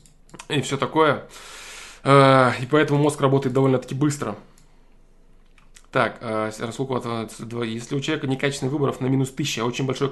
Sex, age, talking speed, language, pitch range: male, 20-39, 125 wpm, Russian, 115-140 Hz